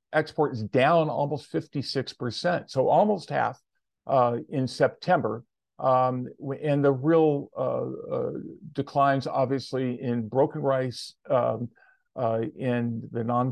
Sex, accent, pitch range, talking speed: male, American, 120-150 Hz, 120 wpm